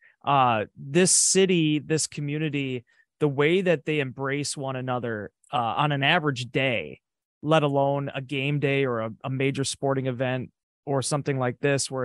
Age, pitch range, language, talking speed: 30-49, 130-155 Hz, English, 165 wpm